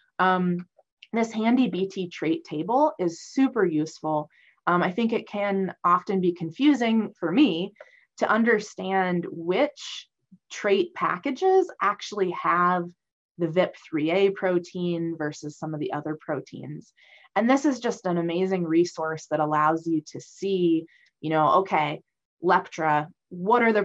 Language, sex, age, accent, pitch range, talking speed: English, female, 20-39, American, 165-235 Hz, 135 wpm